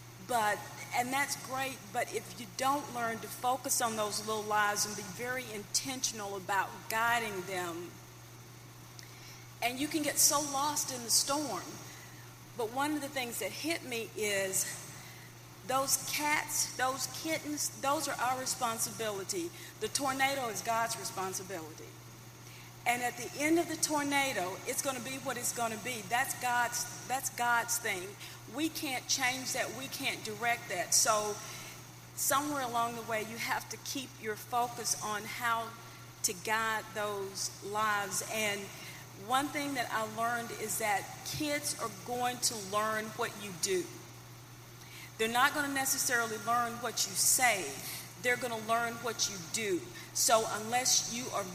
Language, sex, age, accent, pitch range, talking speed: English, female, 40-59, American, 210-270 Hz, 155 wpm